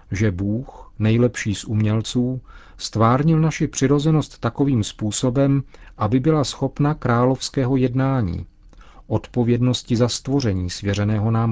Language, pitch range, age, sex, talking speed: Czech, 100-130 Hz, 40-59, male, 105 wpm